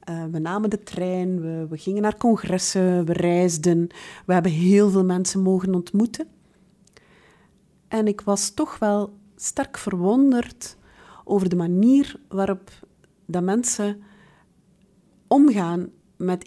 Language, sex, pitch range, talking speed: Dutch, female, 175-200 Hz, 120 wpm